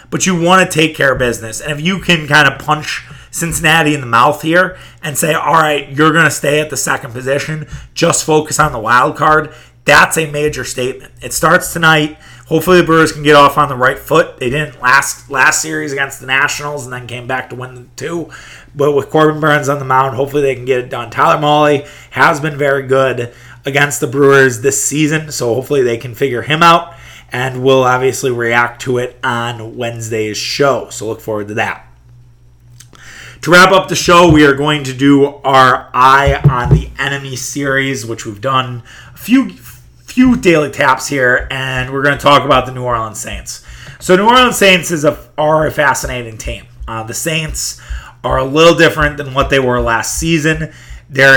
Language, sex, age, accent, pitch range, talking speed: English, male, 30-49, American, 125-155 Hz, 200 wpm